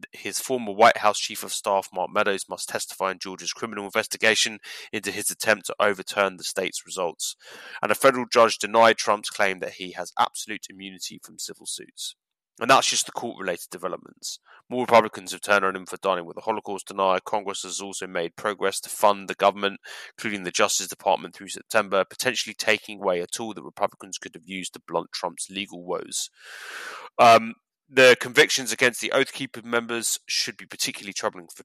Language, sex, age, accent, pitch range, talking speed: English, male, 20-39, British, 95-110 Hz, 185 wpm